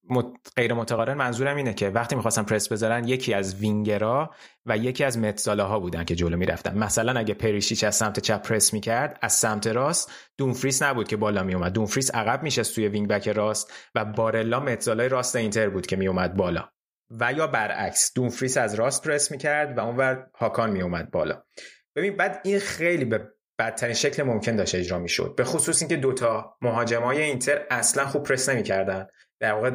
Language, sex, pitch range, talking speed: Persian, male, 110-140 Hz, 180 wpm